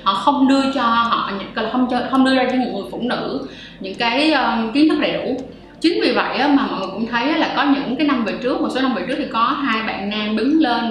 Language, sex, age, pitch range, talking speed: Vietnamese, female, 20-39, 215-275 Hz, 260 wpm